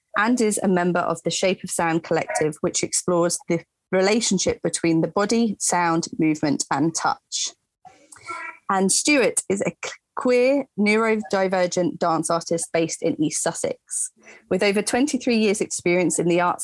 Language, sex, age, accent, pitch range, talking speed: English, female, 30-49, British, 170-215 Hz, 150 wpm